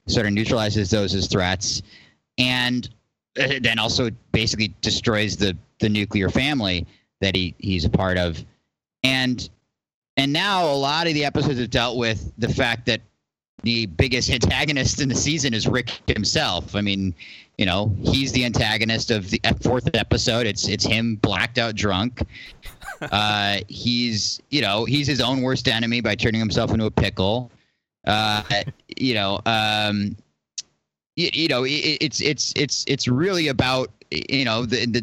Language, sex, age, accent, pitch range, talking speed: English, male, 30-49, American, 105-140 Hz, 160 wpm